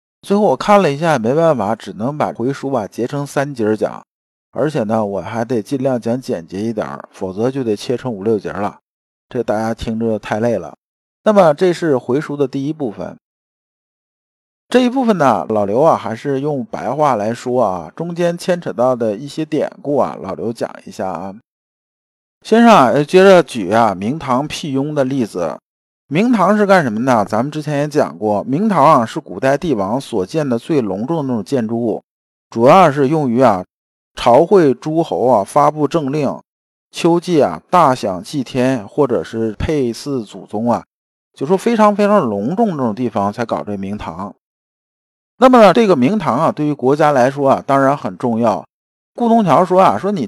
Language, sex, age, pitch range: Chinese, male, 50-69, 115-170 Hz